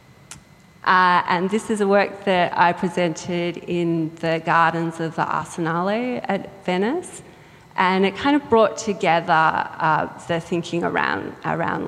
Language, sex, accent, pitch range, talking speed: English, female, Australian, 170-200 Hz, 140 wpm